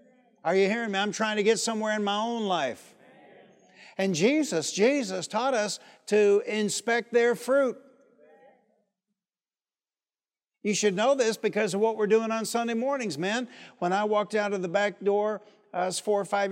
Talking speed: 175 wpm